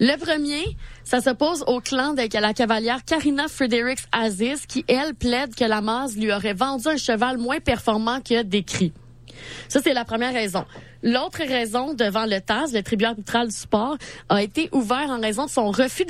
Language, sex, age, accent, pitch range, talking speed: French, female, 30-49, Canadian, 200-250 Hz, 185 wpm